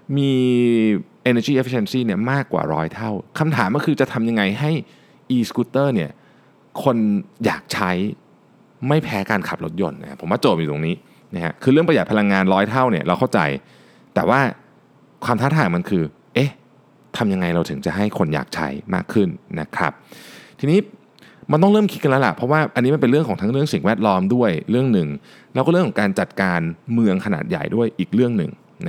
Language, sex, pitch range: Thai, male, 95-145 Hz